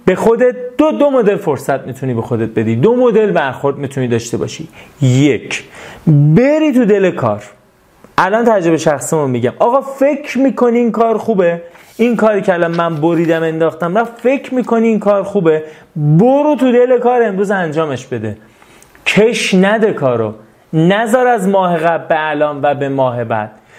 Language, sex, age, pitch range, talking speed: Persian, male, 30-49, 160-225 Hz, 160 wpm